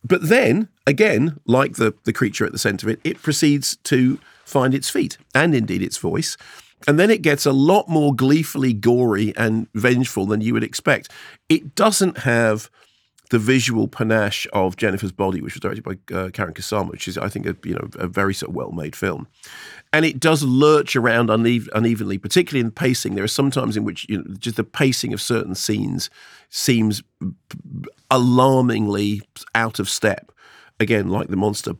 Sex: male